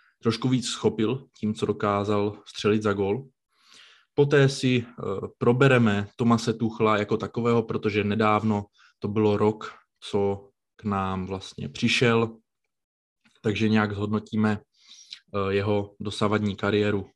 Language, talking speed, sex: Czech, 110 wpm, male